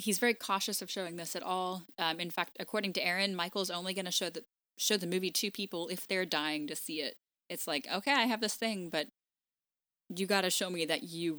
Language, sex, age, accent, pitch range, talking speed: English, female, 10-29, American, 160-215 Hz, 240 wpm